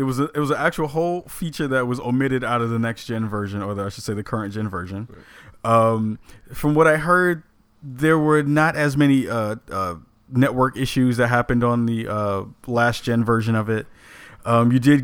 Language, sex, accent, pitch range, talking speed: English, male, American, 110-145 Hz, 210 wpm